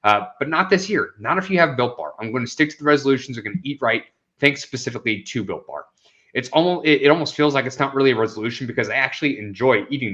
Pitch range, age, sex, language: 120-150 Hz, 30-49, male, English